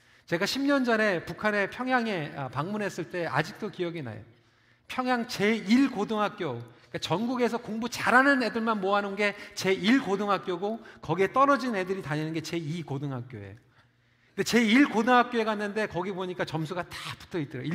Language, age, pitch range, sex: Korean, 40-59, 140-230 Hz, male